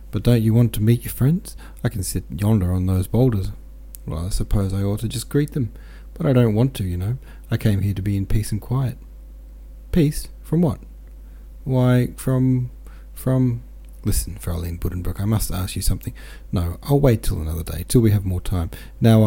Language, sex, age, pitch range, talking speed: English, male, 30-49, 85-110 Hz, 205 wpm